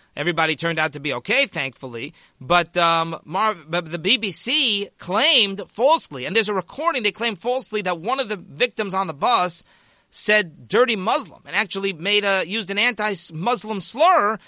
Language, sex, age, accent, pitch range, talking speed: English, male, 40-59, American, 175-230 Hz, 170 wpm